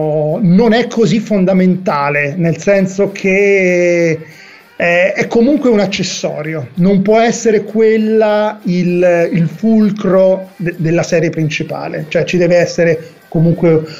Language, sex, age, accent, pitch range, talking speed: Italian, male, 30-49, native, 160-200 Hz, 120 wpm